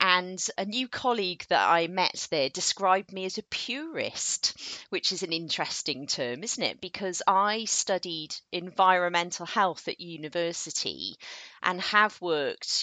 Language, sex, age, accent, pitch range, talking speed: English, female, 40-59, British, 155-200 Hz, 140 wpm